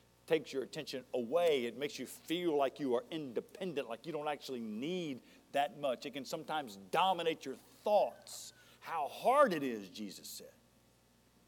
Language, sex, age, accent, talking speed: English, male, 50-69, American, 160 wpm